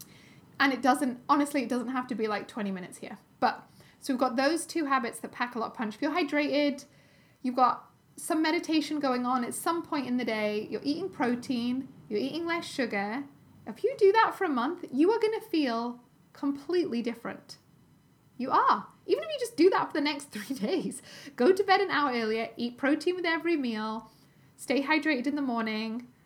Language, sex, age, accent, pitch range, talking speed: English, female, 10-29, British, 235-300 Hz, 205 wpm